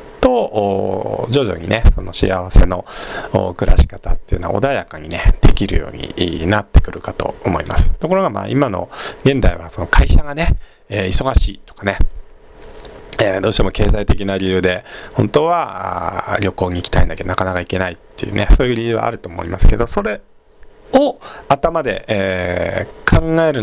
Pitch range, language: 90-115 Hz, Japanese